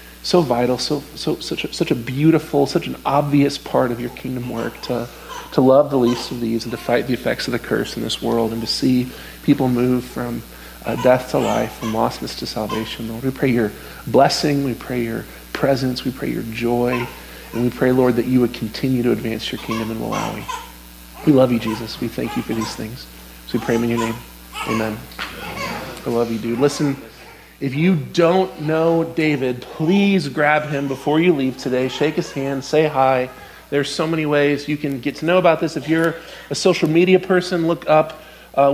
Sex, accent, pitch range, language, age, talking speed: male, American, 125-155 Hz, English, 40-59, 210 wpm